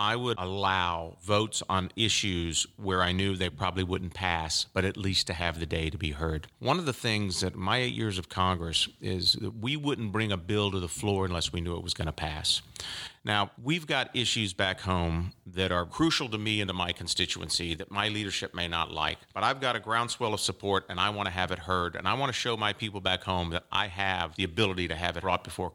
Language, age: English, 40-59